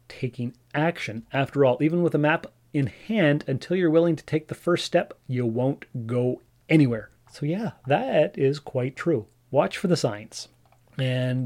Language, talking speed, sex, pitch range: English, 175 wpm, male, 125-155 Hz